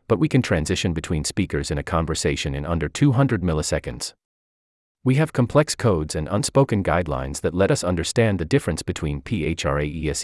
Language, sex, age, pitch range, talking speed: English, male, 30-49, 75-120 Hz, 195 wpm